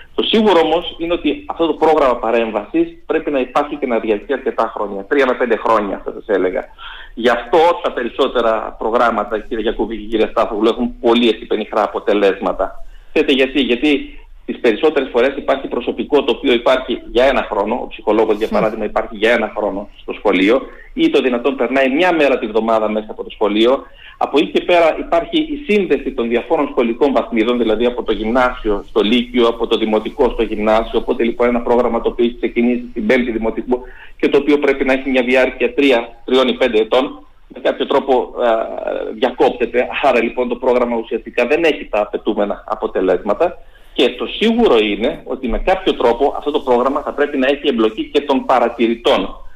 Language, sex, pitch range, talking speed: Greek, male, 115-150 Hz, 180 wpm